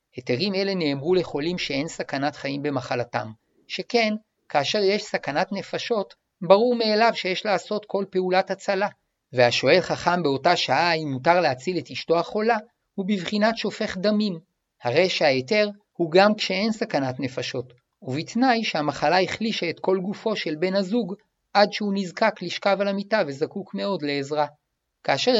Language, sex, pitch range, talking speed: Hebrew, male, 150-195 Hz, 140 wpm